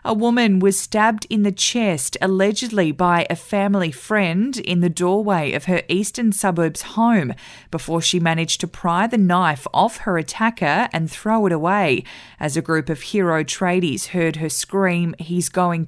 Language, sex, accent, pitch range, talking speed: English, female, Australian, 165-195 Hz, 170 wpm